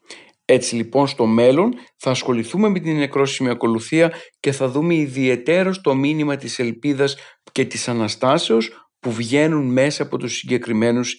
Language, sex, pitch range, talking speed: Greek, male, 120-160 Hz, 145 wpm